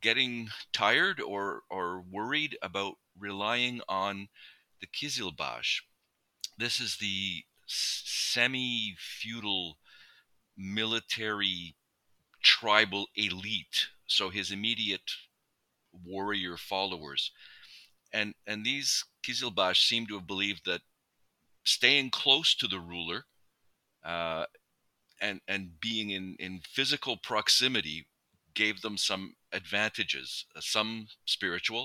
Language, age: English, 50-69